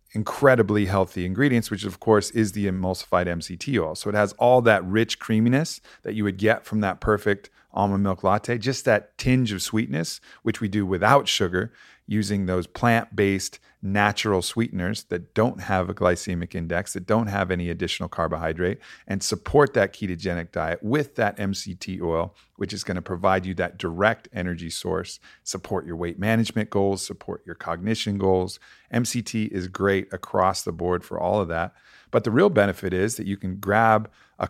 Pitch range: 90-110 Hz